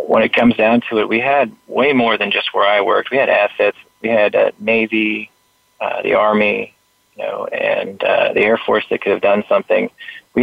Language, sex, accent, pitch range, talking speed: English, male, American, 105-125 Hz, 225 wpm